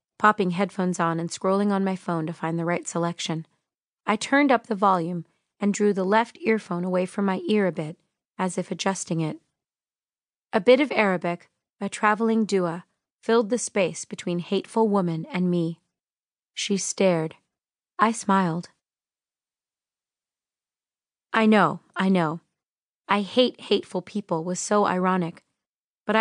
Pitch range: 175-220 Hz